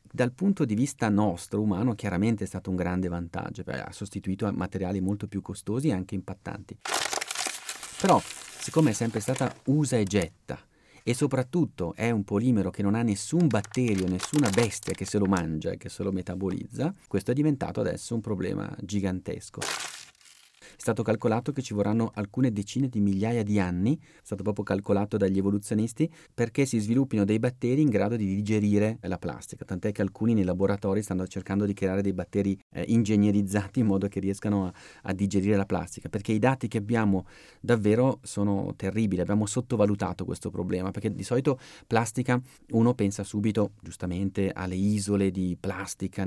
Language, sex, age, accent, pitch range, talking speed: Italian, male, 40-59, native, 95-115 Hz, 170 wpm